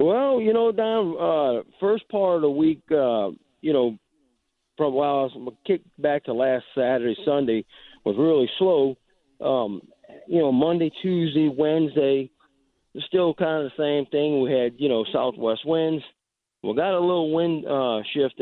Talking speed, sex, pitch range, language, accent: 165 wpm, male, 115-150 Hz, English, American